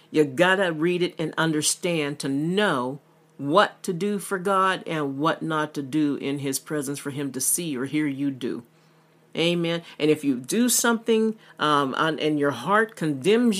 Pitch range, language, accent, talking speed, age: 155-195 Hz, English, American, 180 wpm, 50-69